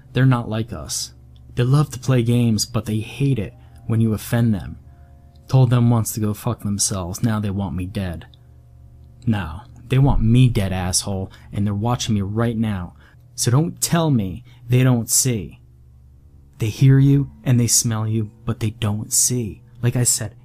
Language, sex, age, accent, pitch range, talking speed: English, male, 20-39, American, 105-120 Hz, 180 wpm